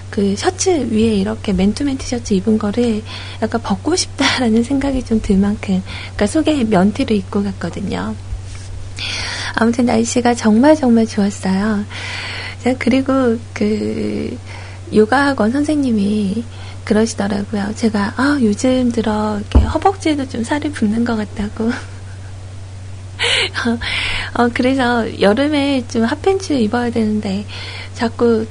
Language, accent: Korean, native